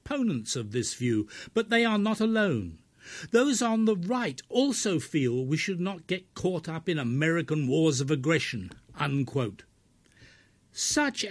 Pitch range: 125-195 Hz